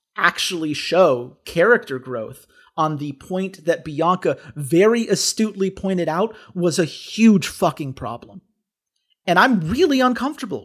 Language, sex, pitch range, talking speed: English, male, 175-285 Hz, 125 wpm